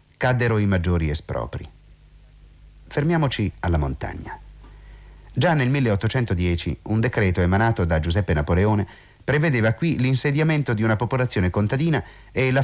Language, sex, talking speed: Italian, male, 120 wpm